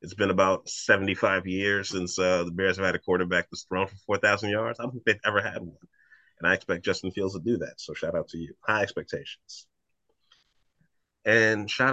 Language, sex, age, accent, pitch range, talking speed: English, male, 30-49, American, 90-110 Hz, 210 wpm